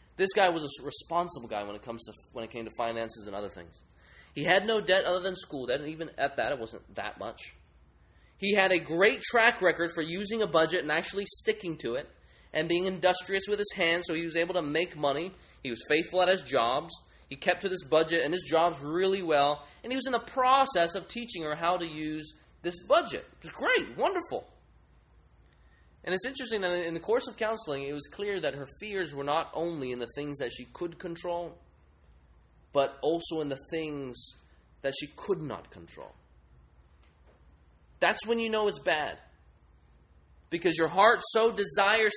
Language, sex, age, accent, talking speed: English, male, 20-39, American, 200 wpm